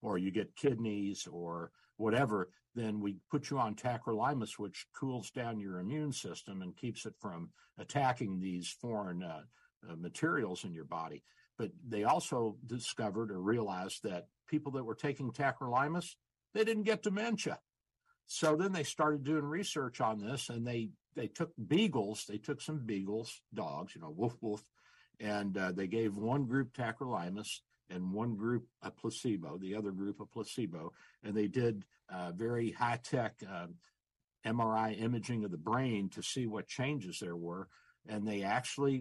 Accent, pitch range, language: American, 100-135 Hz, English